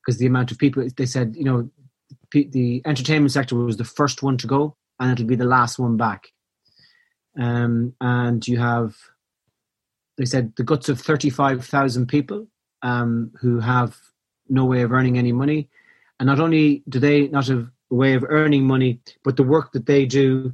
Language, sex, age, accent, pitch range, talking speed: English, male, 30-49, Irish, 125-145 Hz, 185 wpm